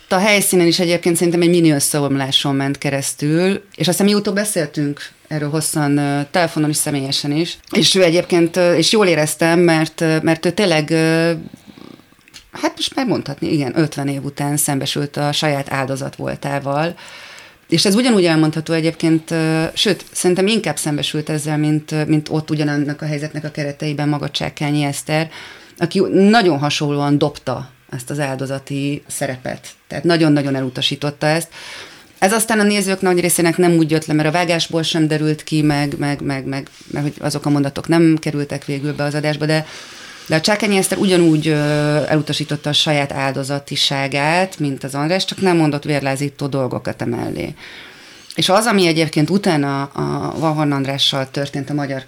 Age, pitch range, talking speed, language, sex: 30-49, 145-175 Hz, 155 wpm, Hungarian, female